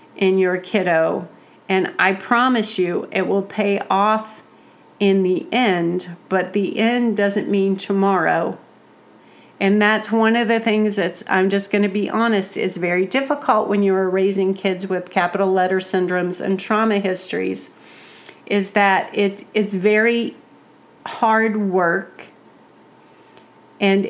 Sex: female